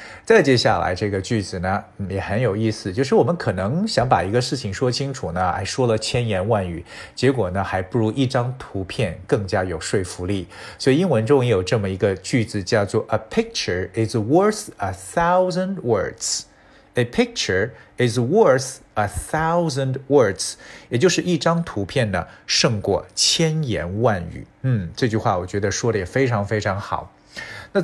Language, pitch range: Chinese, 100-140 Hz